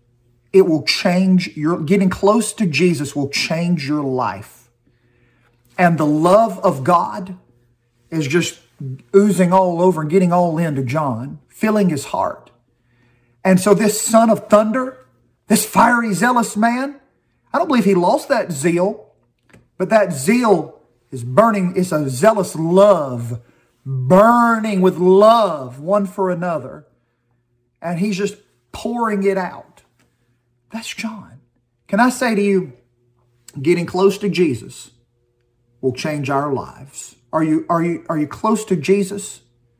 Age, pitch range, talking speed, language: 40-59, 125-200 Hz, 140 wpm, English